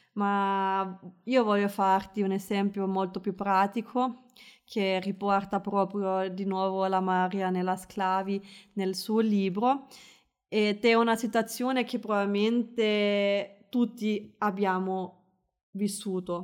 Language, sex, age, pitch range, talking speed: Italian, female, 20-39, 195-240 Hz, 110 wpm